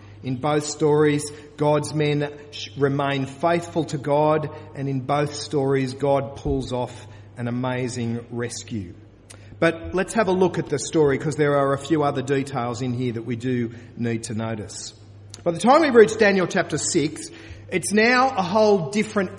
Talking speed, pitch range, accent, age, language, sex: 170 wpm, 125-190 Hz, Australian, 40-59, English, male